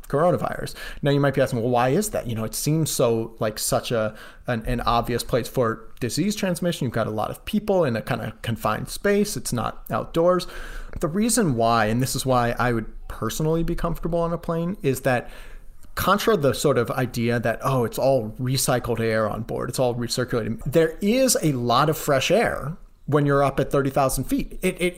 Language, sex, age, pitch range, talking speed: English, male, 30-49, 115-145 Hz, 210 wpm